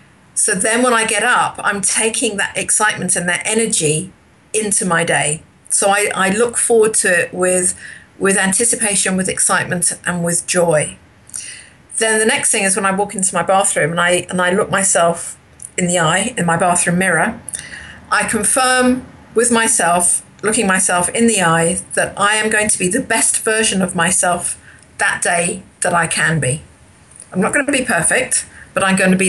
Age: 50-69